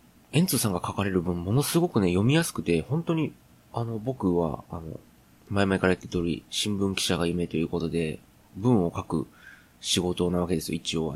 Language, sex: Japanese, male